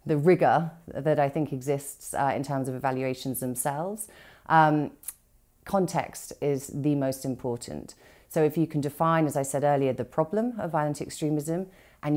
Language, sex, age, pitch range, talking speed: English, female, 30-49, 135-165 Hz, 165 wpm